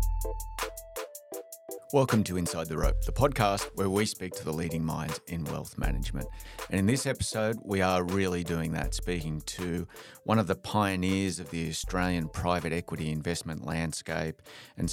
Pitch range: 85-95 Hz